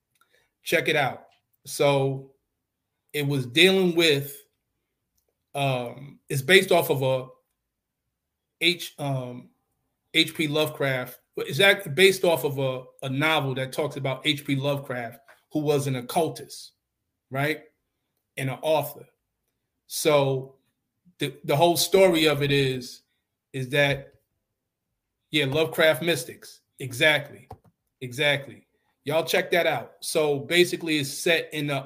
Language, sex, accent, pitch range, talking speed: English, male, American, 130-155 Hz, 120 wpm